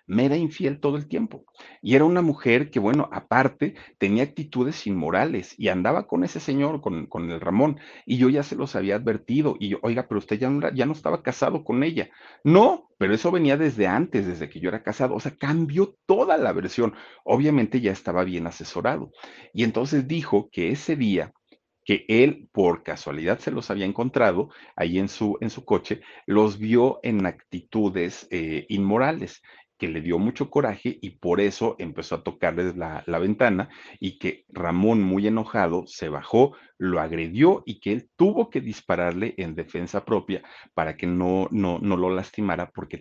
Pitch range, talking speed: 95-135 Hz, 185 wpm